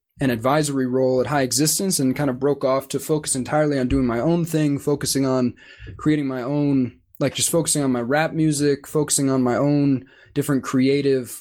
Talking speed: 195 wpm